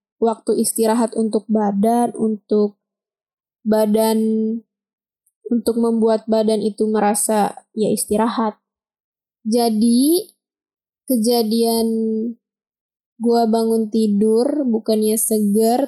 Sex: female